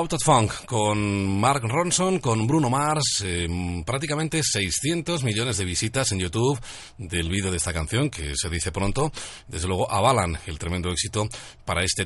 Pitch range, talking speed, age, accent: 90-115 Hz, 170 wpm, 40-59, Spanish